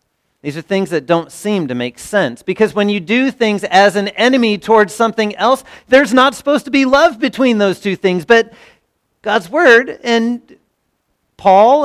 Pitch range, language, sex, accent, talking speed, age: 160-235 Hz, English, male, American, 175 wpm, 40-59